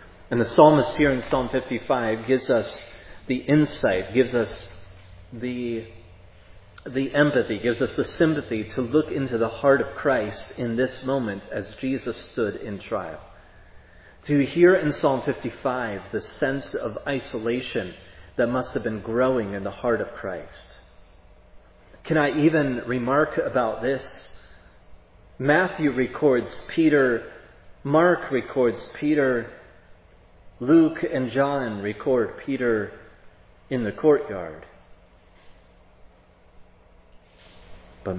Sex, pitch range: male, 90-125 Hz